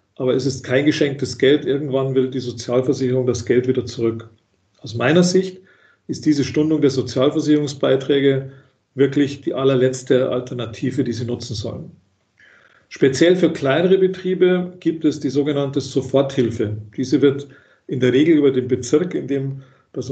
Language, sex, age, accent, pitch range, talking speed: German, male, 50-69, German, 130-150 Hz, 150 wpm